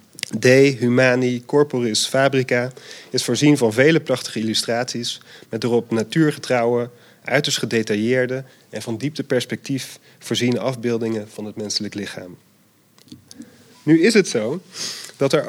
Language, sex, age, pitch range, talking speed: Dutch, male, 40-59, 120-145 Hz, 120 wpm